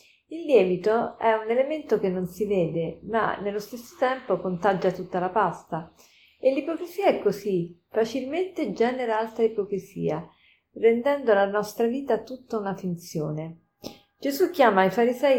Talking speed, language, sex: 140 wpm, Italian, female